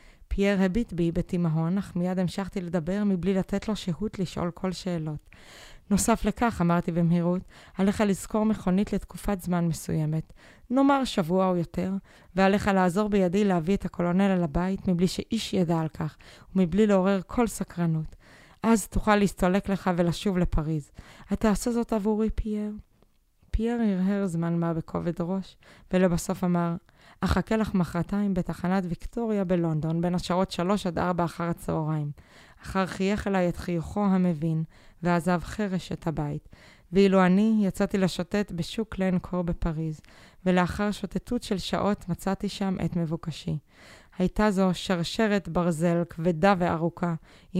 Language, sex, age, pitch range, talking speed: Hebrew, female, 20-39, 170-200 Hz, 135 wpm